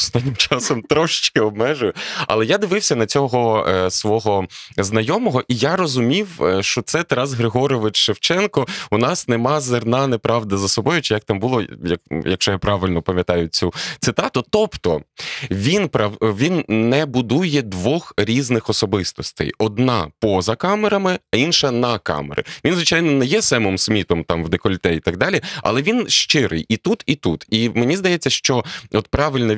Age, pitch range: 20-39, 95-145 Hz